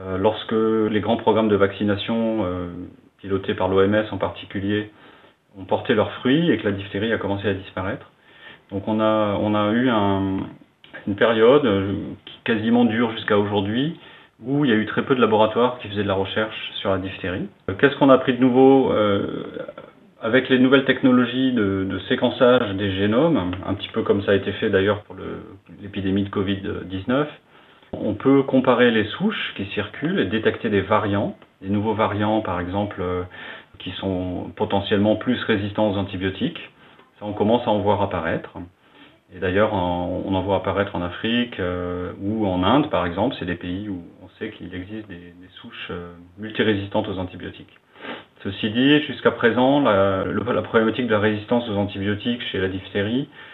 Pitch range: 95-115 Hz